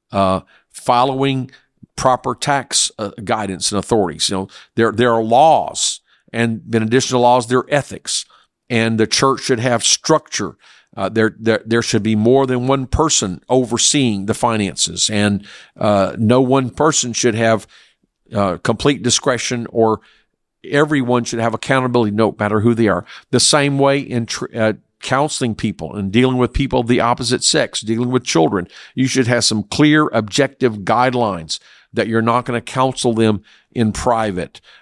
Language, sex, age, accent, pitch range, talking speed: English, male, 50-69, American, 110-130 Hz, 165 wpm